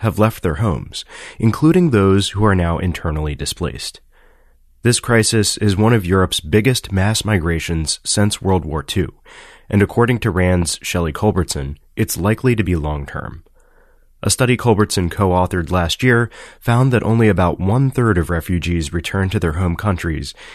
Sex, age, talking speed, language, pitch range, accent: male, 30-49, 155 wpm, English, 85-115 Hz, American